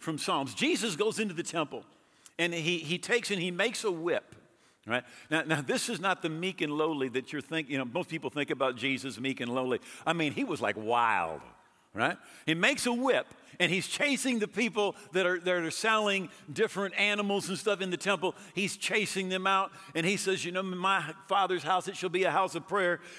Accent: American